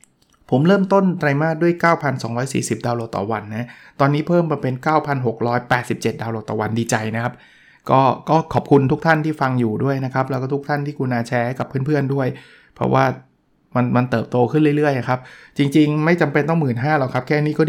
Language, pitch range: Thai, 120-150 Hz